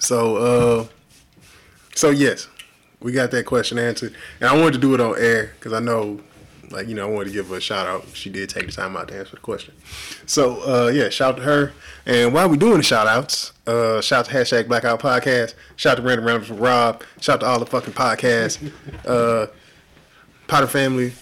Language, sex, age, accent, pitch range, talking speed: English, male, 10-29, American, 115-130 Hz, 205 wpm